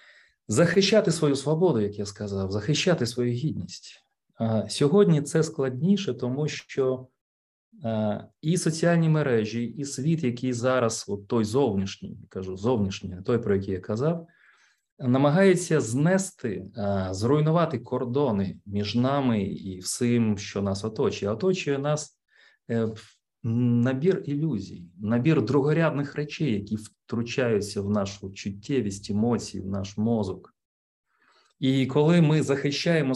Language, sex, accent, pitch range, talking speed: Ukrainian, male, native, 105-150 Hz, 115 wpm